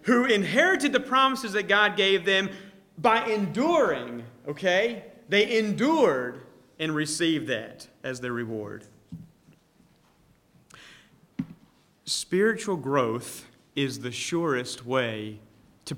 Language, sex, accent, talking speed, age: English, male, American, 100 wpm, 40-59